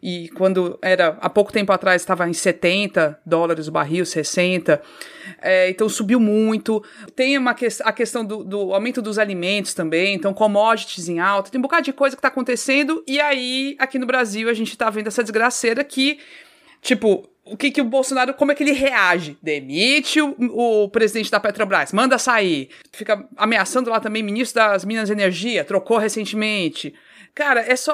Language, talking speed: Portuguese, 180 wpm